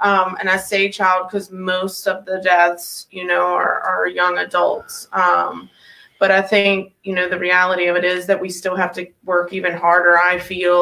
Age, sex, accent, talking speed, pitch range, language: 20-39, female, American, 205 wpm, 180-200 Hz, English